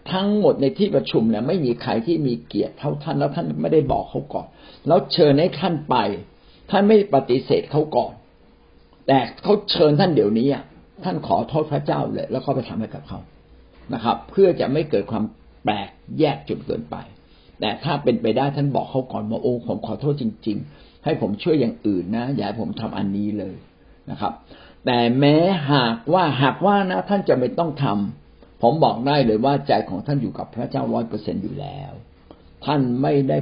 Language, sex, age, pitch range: Thai, male, 60-79, 105-145 Hz